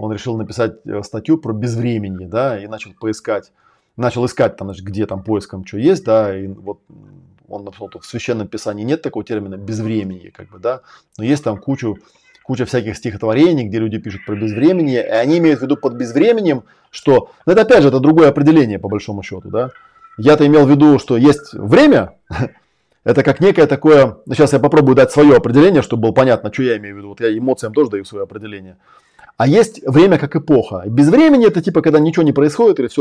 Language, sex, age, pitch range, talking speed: Russian, male, 20-39, 110-145 Hz, 200 wpm